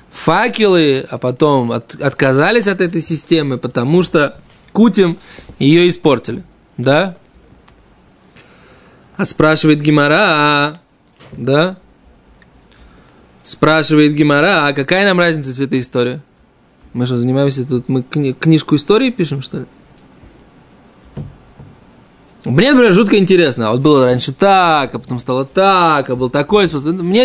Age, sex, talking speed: 20-39, male, 120 wpm